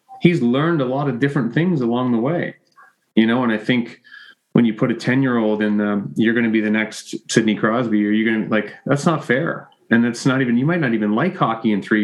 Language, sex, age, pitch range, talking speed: English, male, 30-49, 110-130 Hz, 265 wpm